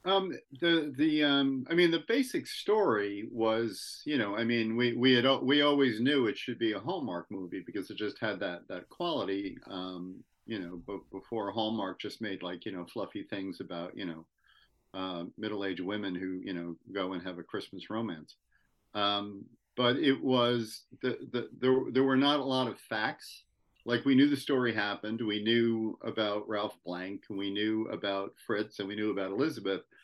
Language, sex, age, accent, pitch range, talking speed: English, male, 50-69, American, 100-125 Hz, 195 wpm